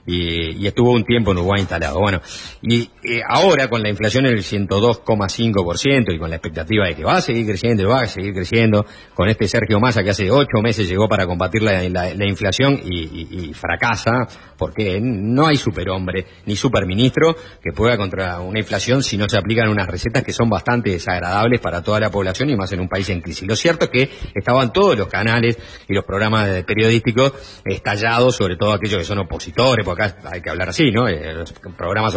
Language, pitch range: Spanish, 95-125 Hz